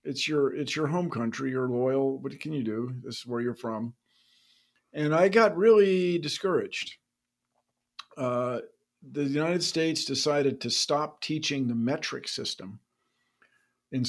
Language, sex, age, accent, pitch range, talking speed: English, male, 50-69, American, 115-145 Hz, 145 wpm